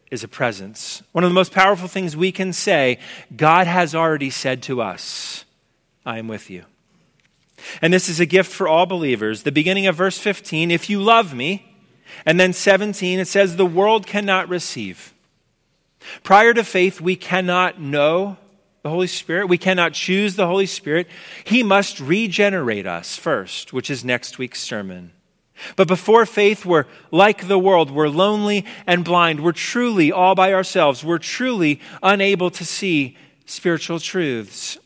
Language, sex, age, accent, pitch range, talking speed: English, male, 40-59, American, 140-190 Hz, 165 wpm